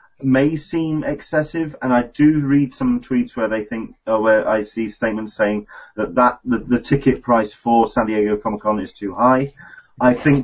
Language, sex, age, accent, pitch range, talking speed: English, male, 30-49, British, 110-140 Hz, 195 wpm